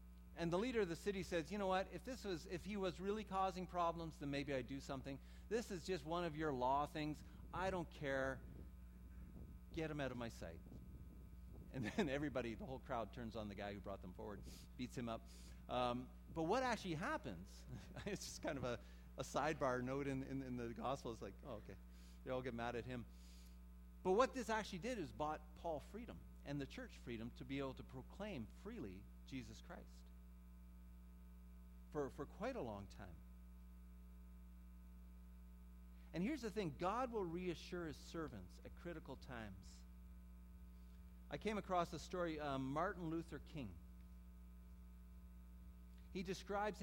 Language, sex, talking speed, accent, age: English, male, 175 wpm, American, 40-59